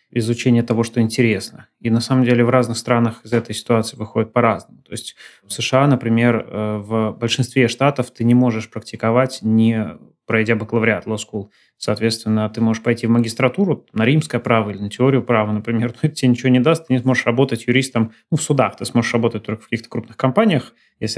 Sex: male